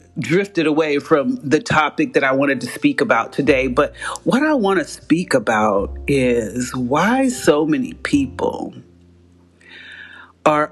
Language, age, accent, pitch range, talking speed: English, 40-59, American, 130-195 Hz, 140 wpm